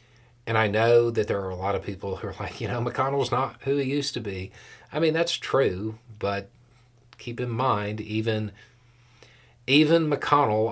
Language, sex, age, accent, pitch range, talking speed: English, male, 40-59, American, 100-120 Hz, 185 wpm